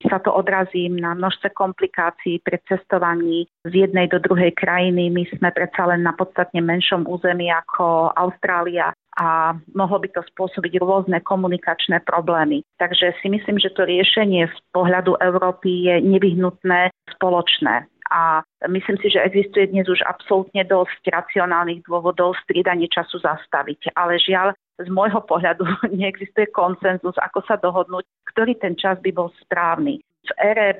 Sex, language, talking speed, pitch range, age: female, Slovak, 145 wpm, 175-195 Hz, 40-59